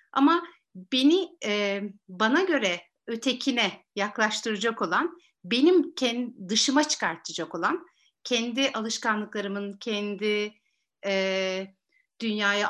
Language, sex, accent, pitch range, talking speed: Turkish, female, native, 200-280 Hz, 85 wpm